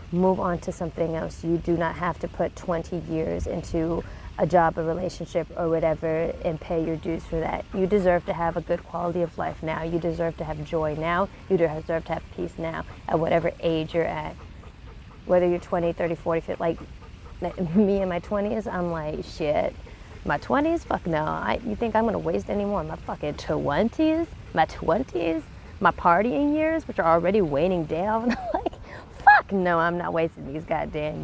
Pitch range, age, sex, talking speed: 165-200 Hz, 30-49, female, 190 wpm